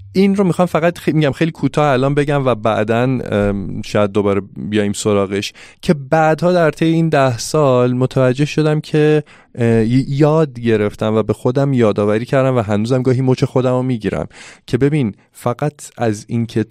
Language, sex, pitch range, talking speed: Persian, male, 100-130 Hz, 165 wpm